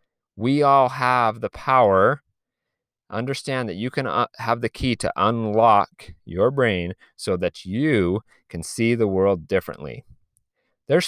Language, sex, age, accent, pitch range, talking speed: English, male, 30-49, American, 90-125 Hz, 135 wpm